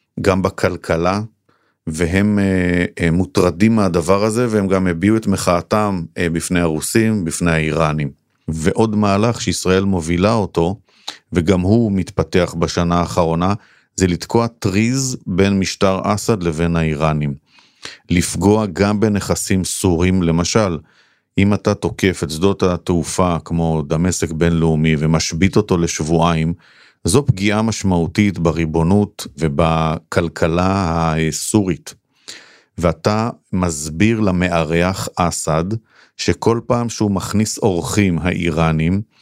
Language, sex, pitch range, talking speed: Hebrew, male, 85-105 Hz, 100 wpm